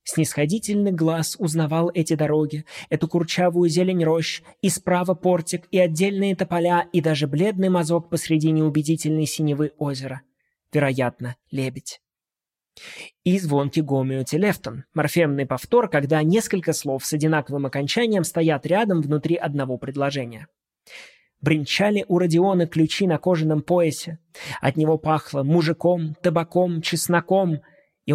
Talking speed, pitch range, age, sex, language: 120 wpm, 140-175 Hz, 20-39, male, Russian